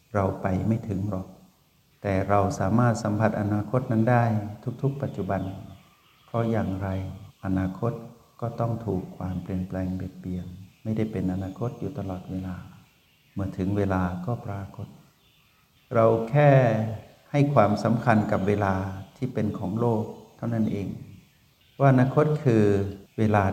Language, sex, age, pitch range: Thai, male, 60-79, 95-115 Hz